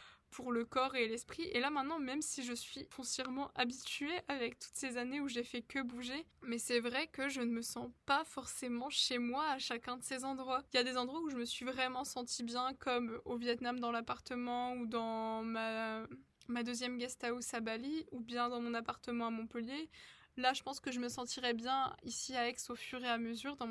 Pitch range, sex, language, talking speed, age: 240-265 Hz, female, French, 230 wpm, 20-39